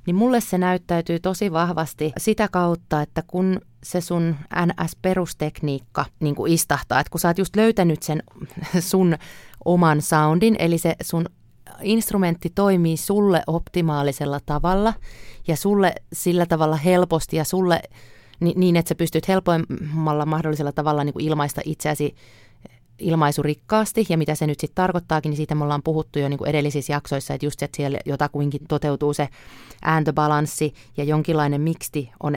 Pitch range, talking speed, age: 150-180 Hz, 145 wpm, 30-49